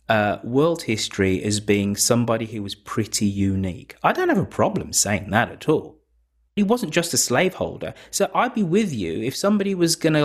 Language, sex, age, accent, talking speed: English, male, 30-49, British, 200 wpm